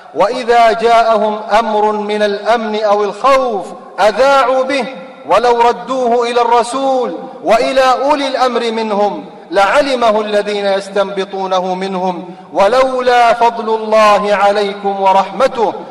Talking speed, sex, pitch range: 100 wpm, male, 180-205 Hz